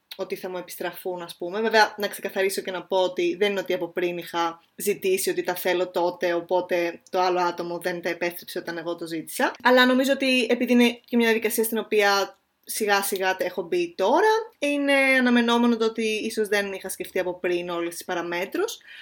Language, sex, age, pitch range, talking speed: Greek, female, 20-39, 180-250 Hz, 200 wpm